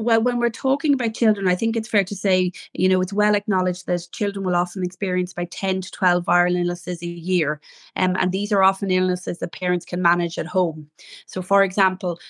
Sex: female